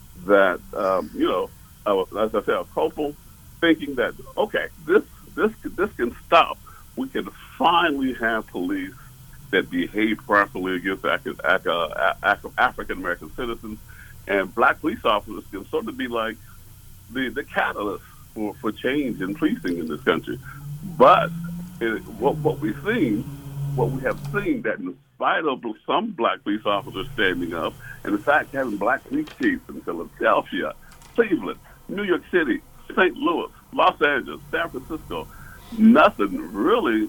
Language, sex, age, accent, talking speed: English, male, 60-79, American, 150 wpm